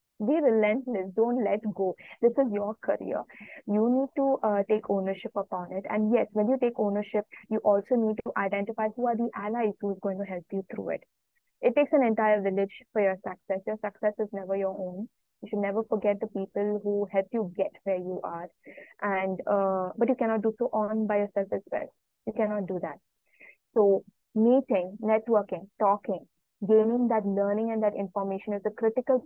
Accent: Indian